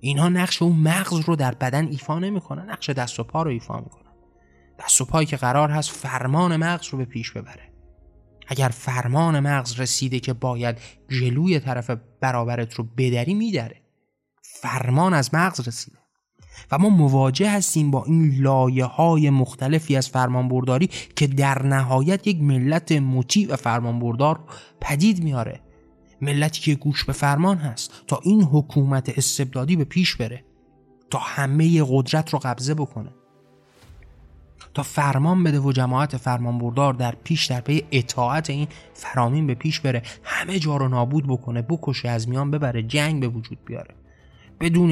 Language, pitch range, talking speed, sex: Persian, 125-150 Hz, 155 wpm, male